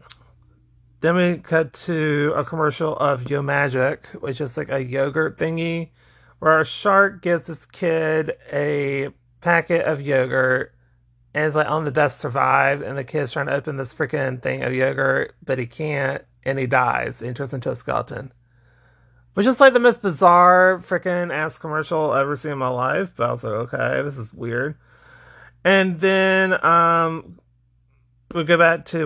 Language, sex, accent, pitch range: English, male, American, 130-160 Hz